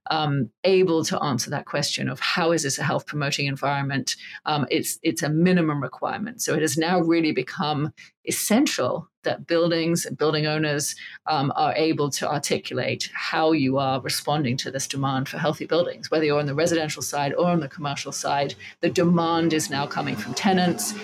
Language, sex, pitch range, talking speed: English, female, 140-175 Hz, 185 wpm